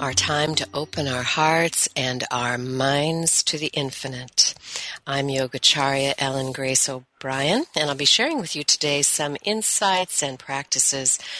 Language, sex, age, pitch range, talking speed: English, female, 50-69, 130-165 Hz, 145 wpm